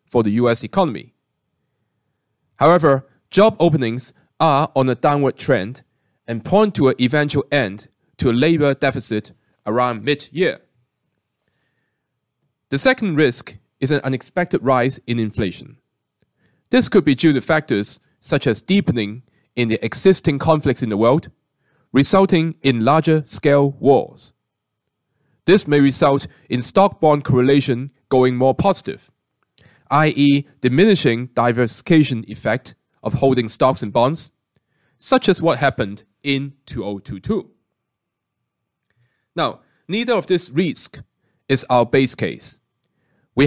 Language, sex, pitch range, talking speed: English, male, 120-160 Hz, 125 wpm